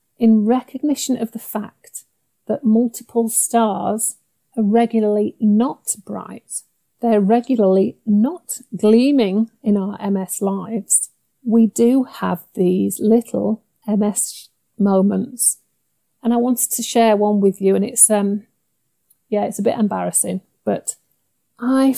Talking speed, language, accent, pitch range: 125 wpm, English, British, 200-245 Hz